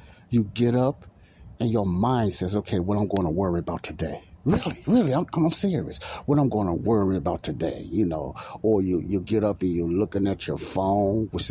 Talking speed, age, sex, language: 215 wpm, 60-79, male, English